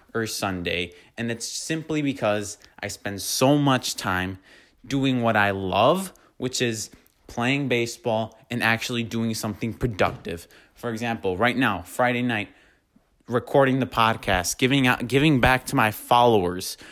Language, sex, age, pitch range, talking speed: English, male, 20-39, 110-130 Hz, 140 wpm